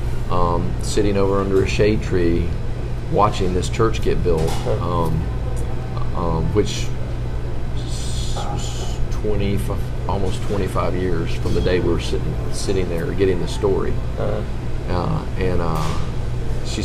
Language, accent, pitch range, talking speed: English, American, 95-110 Hz, 130 wpm